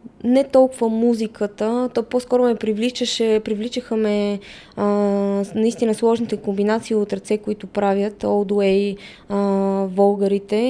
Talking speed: 95 wpm